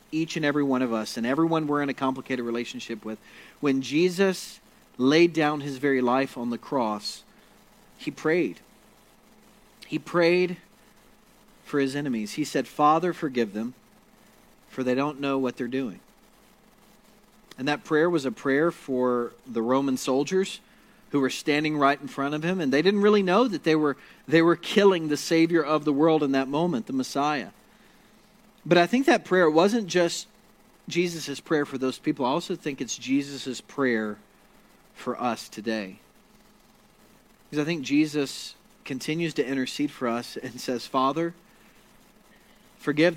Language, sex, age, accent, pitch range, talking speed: English, male, 40-59, American, 135-200 Hz, 160 wpm